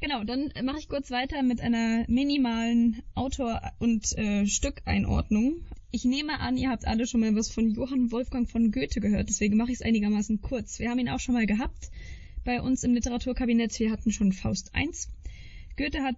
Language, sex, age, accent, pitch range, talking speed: German, female, 10-29, German, 215-250 Hz, 195 wpm